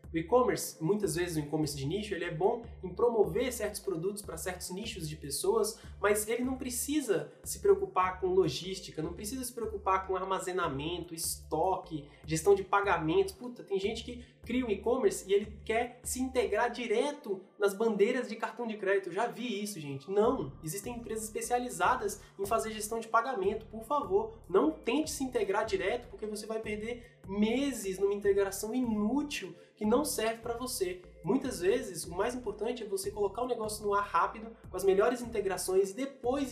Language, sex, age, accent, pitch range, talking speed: Portuguese, male, 20-39, Brazilian, 185-240 Hz, 180 wpm